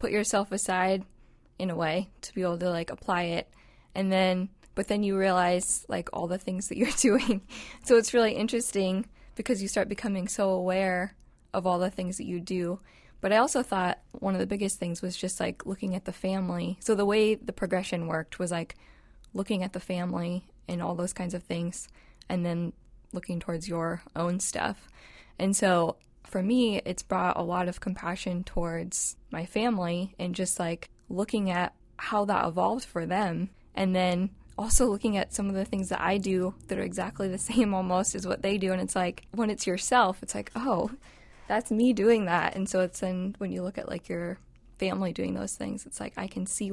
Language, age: English, 10-29